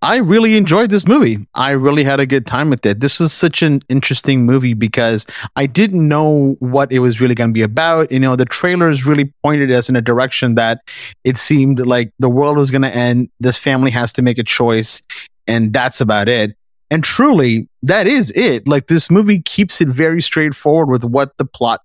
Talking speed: 215 wpm